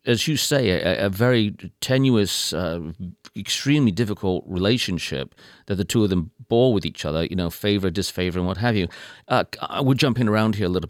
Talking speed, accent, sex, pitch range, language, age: 185 wpm, British, male, 85-115 Hz, English, 40-59